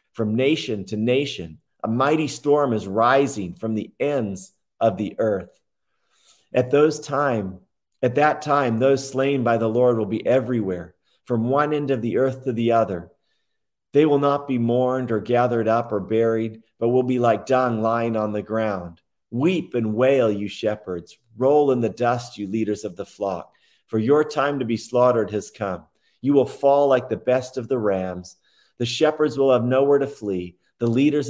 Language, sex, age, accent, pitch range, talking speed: English, male, 40-59, American, 105-130 Hz, 185 wpm